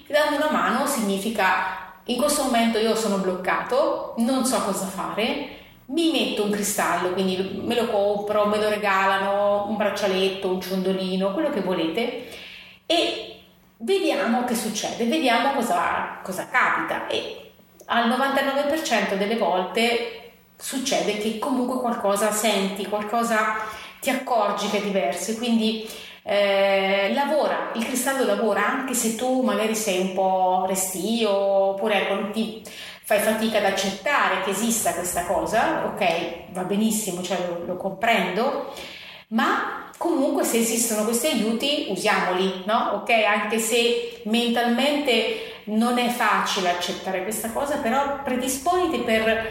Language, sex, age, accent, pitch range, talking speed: Italian, female, 30-49, native, 195-245 Hz, 135 wpm